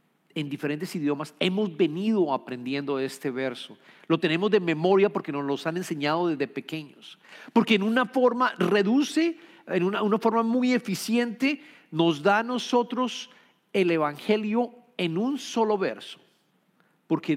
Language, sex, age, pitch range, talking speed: English, male, 50-69, 155-215 Hz, 140 wpm